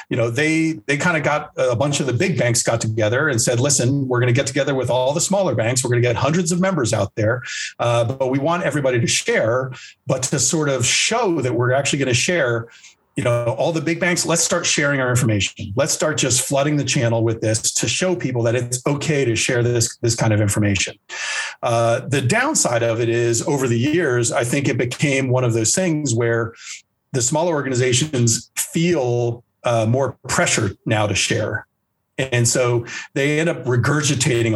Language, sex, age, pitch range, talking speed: English, male, 40-59, 115-150 Hz, 210 wpm